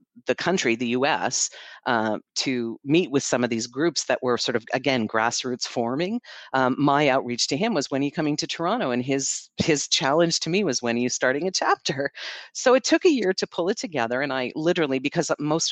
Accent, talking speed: American, 220 wpm